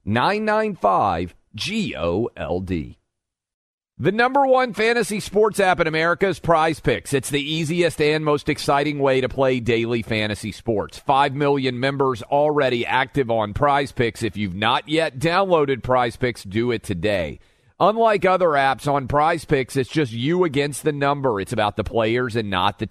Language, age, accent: English, 40-59, American